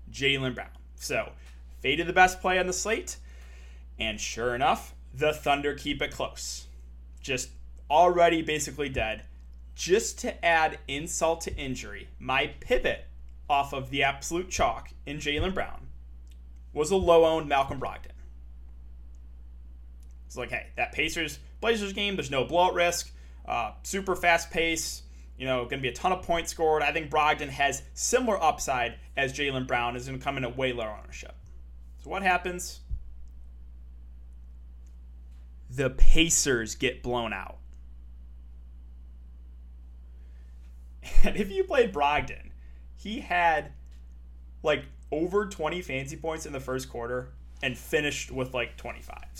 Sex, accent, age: male, American, 20-39